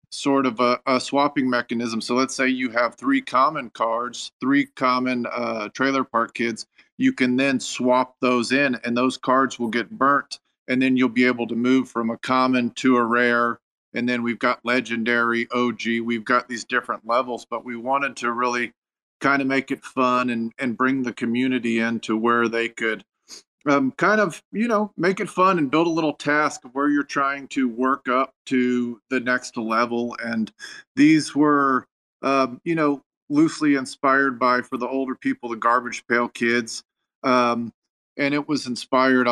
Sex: male